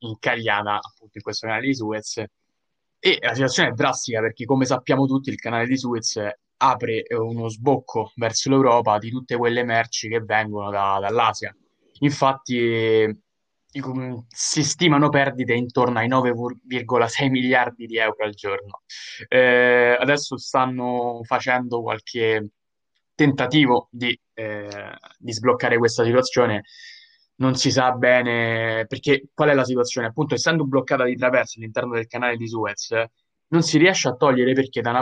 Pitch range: 115-135 Hz